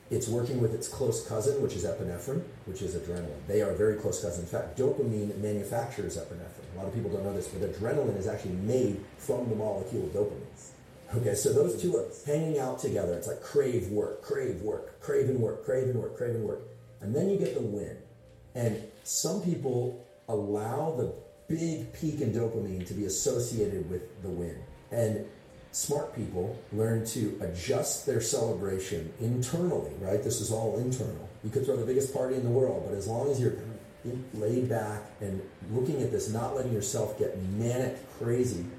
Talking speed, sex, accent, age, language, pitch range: 190 wpm, male, American, 40-59, English, 100-125 Hz